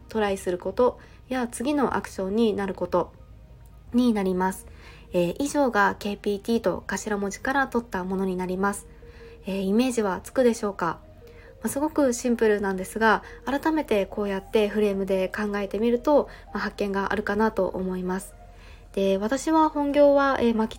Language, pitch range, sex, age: Japanese, 190-240 Hz, female, 20-39